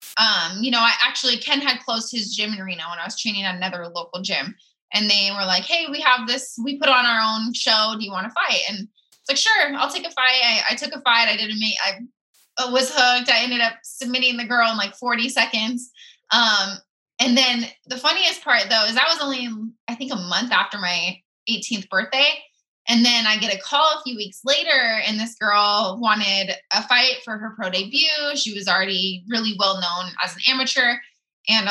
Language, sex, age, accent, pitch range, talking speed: English, female, 20-39, American, 210-270 Hz, 220 wpm